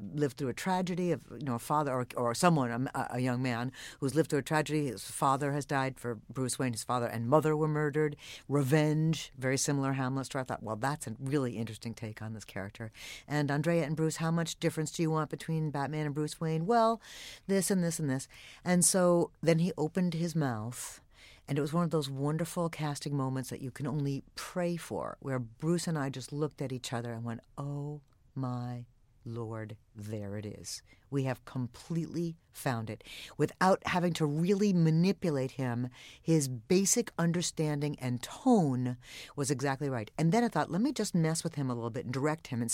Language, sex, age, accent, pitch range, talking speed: English, female, 50-69, American, 125-160 Hz, 205 wpm